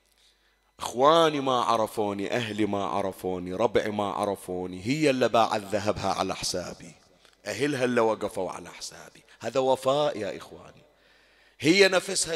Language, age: Arabic, 30-49